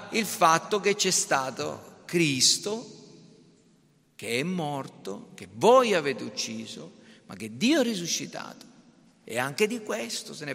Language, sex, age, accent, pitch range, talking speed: Italian, male, 50-69, native, 160-225 Hz, 135 wpm